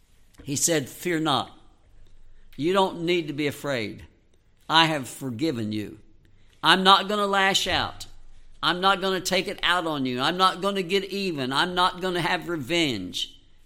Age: 60-79